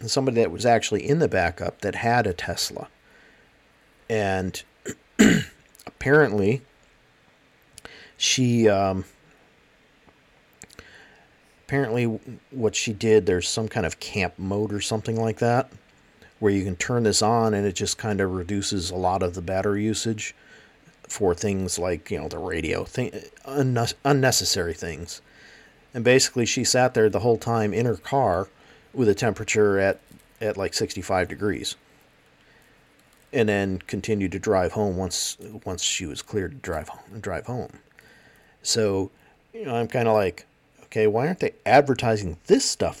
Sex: male